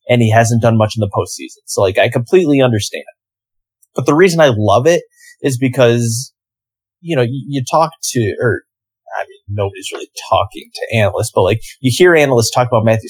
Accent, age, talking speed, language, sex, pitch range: American, 20-39, 195 wpm, English, male, 110-140 Hz